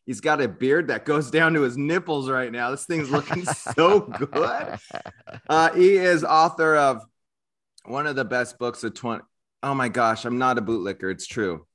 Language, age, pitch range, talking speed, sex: English, 30-49, 95-130 Hz, 200 wpm, male